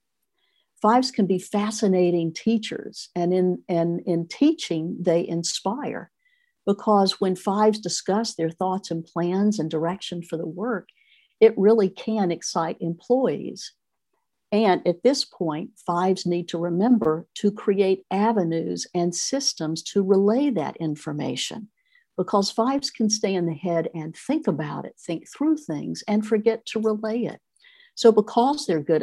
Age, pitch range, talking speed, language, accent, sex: 60-79, 170-220 Hz, 145 wpm, English, American, female